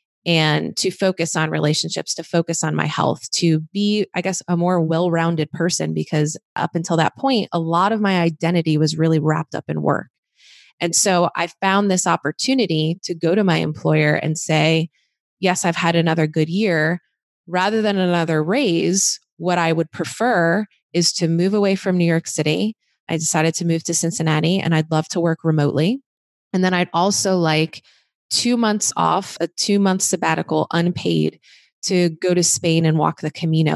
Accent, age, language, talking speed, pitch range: American, 20-39, English, 180 wpm, 155-180 Hz